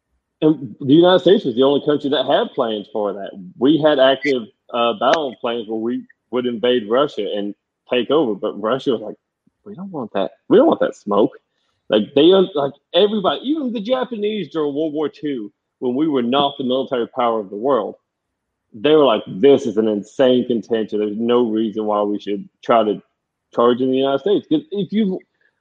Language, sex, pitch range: English, male, 110-140 Hz